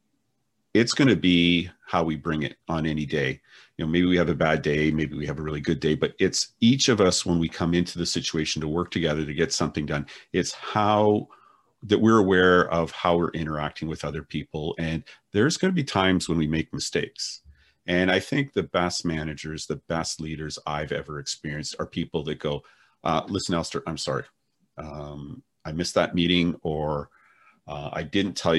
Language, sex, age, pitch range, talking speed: English, male, 40-59, 75-90 Hz, 195 wpm